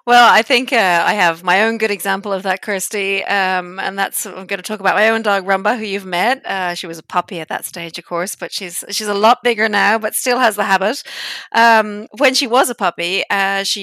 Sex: female